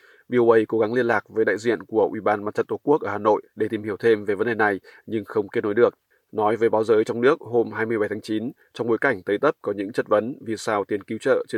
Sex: male